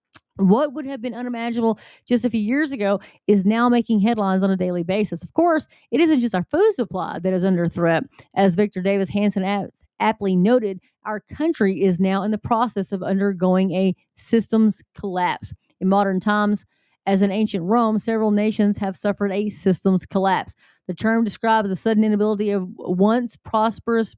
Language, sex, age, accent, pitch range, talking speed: English, female, 30-49, American, 190-225 Hz, 175 wpm